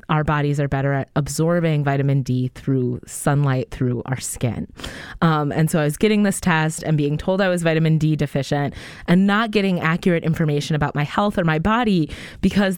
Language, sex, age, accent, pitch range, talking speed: English, female, 20-39, American, 150-195 Hz, 195 wpm